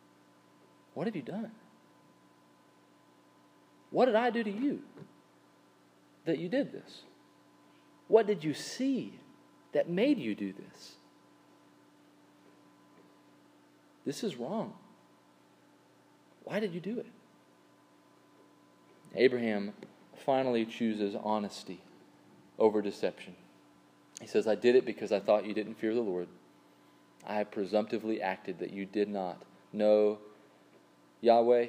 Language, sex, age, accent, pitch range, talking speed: English, male, 40-59, American, 90-125 Hz, 110 wpm